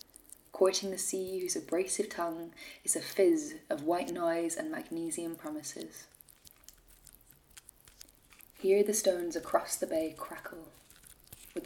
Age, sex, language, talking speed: 20-39, female, Dutch, 120 wpm